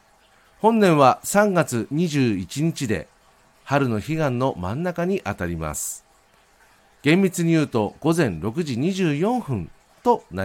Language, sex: Japanese, male